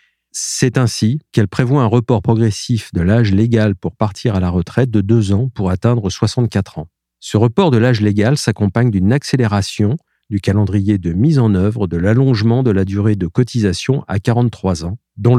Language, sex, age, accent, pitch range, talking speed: French, male, 50-69, French, 95-125 Hz, 185 wpm